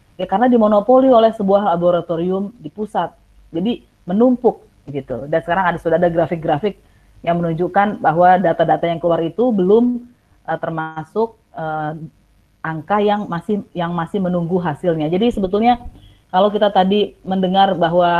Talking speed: 140 wpm